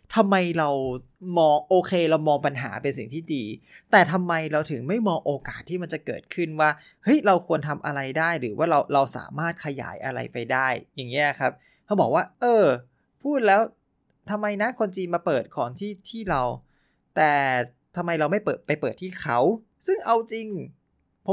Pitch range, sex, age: 135-190 Hz, male, 20-39